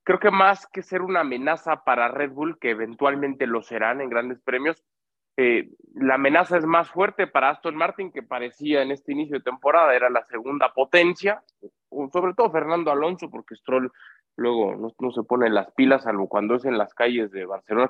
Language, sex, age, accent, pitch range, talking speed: Spanish, male, 20-39, Mexican, 120-165 Hz, 200 wpm